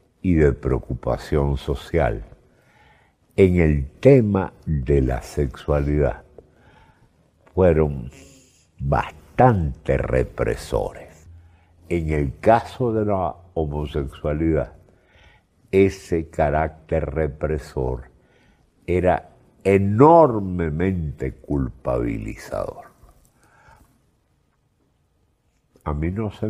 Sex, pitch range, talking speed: male, 70-95 Hz, 65 wpm